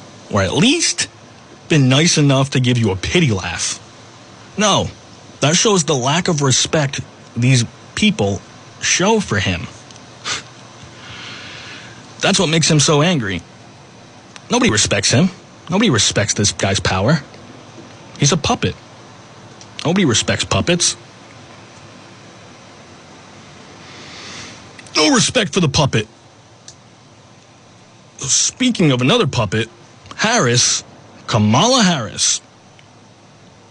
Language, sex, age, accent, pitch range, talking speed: English, male, 30-49, American, 110-150 Hz, 100 wpm